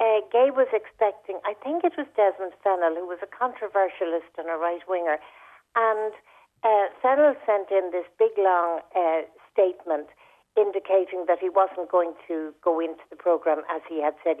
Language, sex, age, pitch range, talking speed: English, female, 60-79, 175-230 Hz, 170 wpm